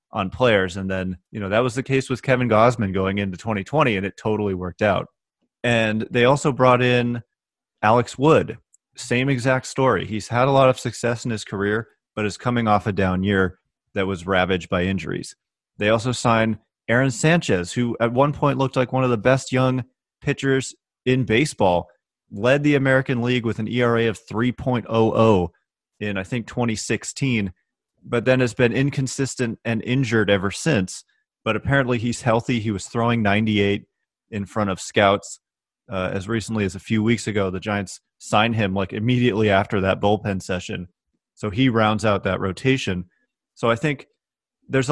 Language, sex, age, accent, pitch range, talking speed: English, male, 30-49, American, 100-130 Hz, 180 wpm